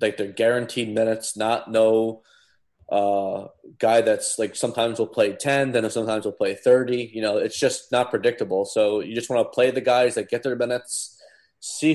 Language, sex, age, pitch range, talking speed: English, male, 20-39, 100-120 Hz, 190 wpm